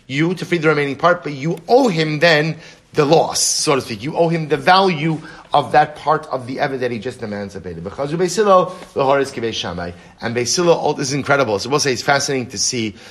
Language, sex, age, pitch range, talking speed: English, male, 30-49, 120-160 Hz, 190 wpm